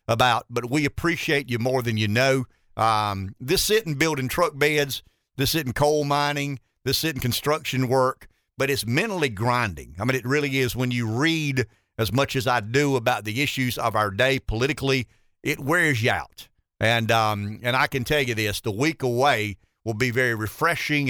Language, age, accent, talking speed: English, 50-69, American, 190 wpm